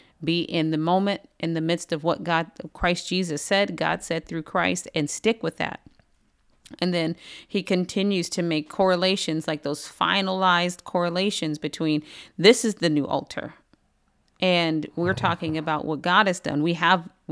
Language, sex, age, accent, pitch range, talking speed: English, female, 30-49, American, 170-200 Hz, 165 wpm